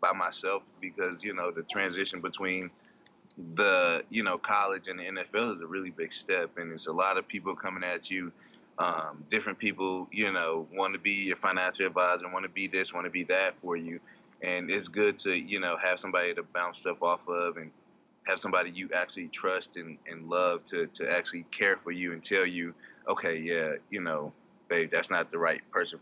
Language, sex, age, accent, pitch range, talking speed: English, male, 20-39, American, 85-95 Hz, 210 wpm